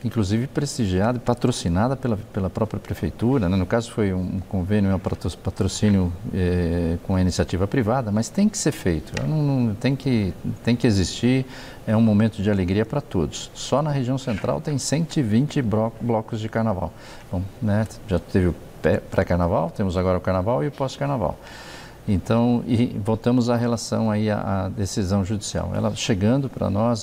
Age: 50-69